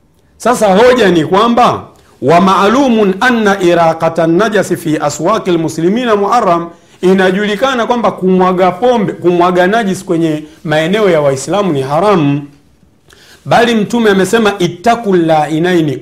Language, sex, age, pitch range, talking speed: Swahili, male, 50-69, 145-195 Hz, 110 wpm